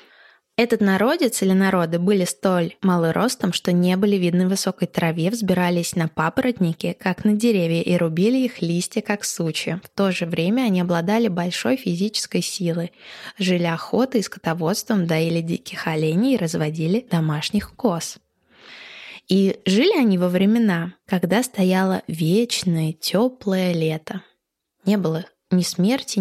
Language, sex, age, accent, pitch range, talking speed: Russian, female, 20-39, native, 170-210 Hz, 135 wpm